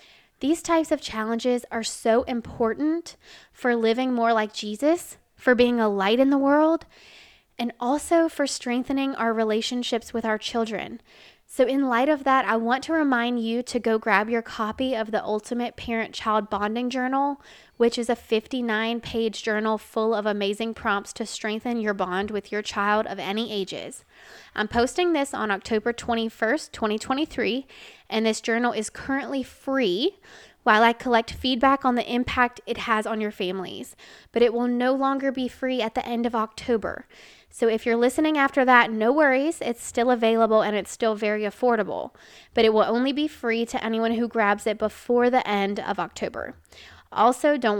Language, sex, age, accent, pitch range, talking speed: English, female, 20-39, American, 215-255 Hz, 175 wpm